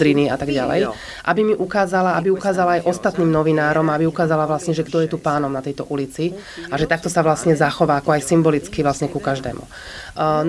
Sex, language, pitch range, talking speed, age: female, Slovak, 150-175 Hz, 200 wpm, 30-49